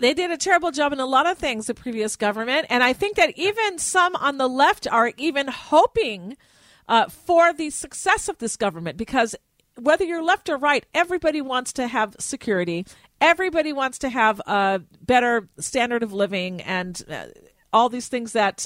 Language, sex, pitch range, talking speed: English, female, 205-275 Hz, 185 wpm